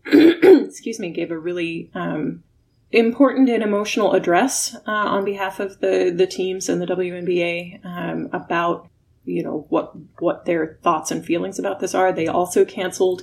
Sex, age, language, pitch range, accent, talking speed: female, 20-39, English, 165-215 Hz, American, 165 wpm